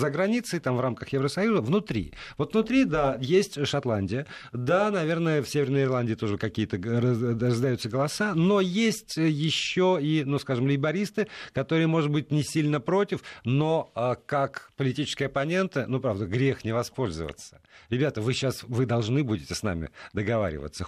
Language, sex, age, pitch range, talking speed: Russian, male, 50-69, 115-150 Hz, 150 wpm